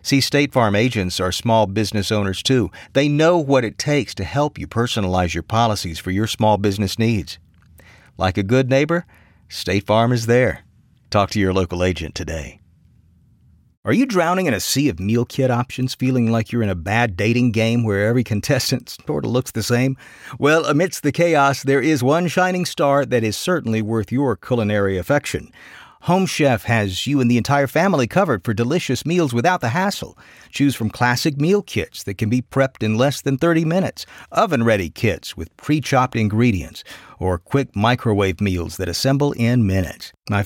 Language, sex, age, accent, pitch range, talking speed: English, male, 50-69, American, 100-135 Hz, 185 wpm